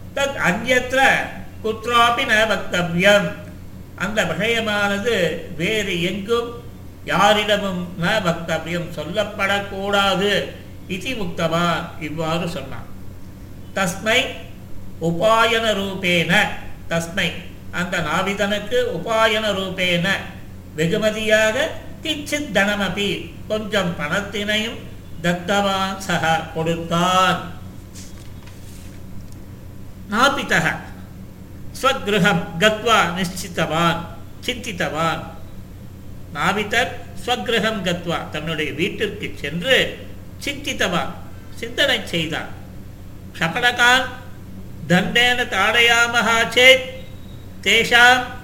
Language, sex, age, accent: Tamil, male, 50-69, native